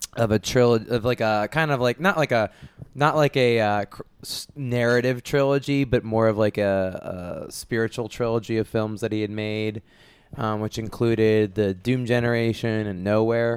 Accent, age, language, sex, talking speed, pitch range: American, 20-39, English, male, 175 wpm, 105-120 Hz